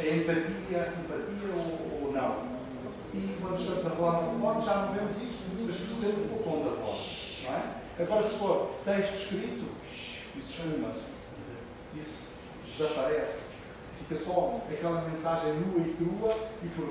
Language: Portuguese